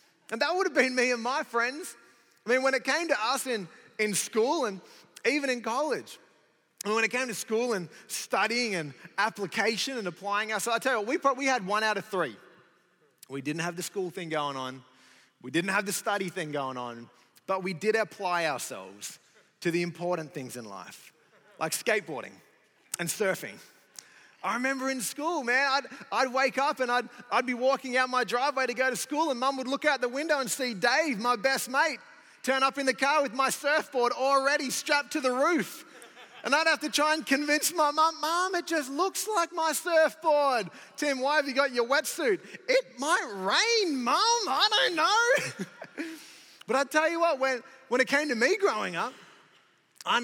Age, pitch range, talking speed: 30-49, 210-295 Hz, 205 wpm